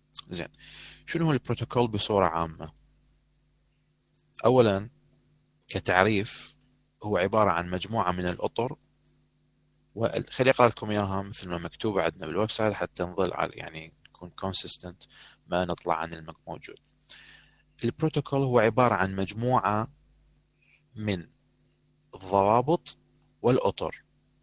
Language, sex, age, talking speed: Arabic, male, 30-49, 100 wpm